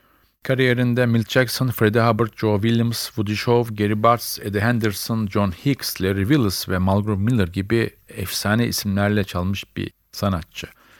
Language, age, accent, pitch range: Turkish, 40-59, native, 95-115 Hz